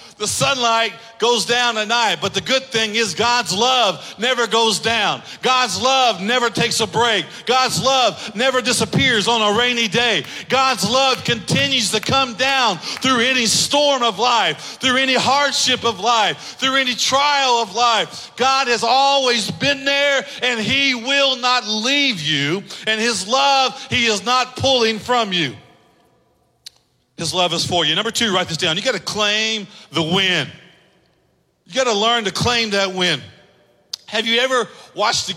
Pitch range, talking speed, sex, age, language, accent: 195-245 Hz, 170 wpm, male, 40-59, English, American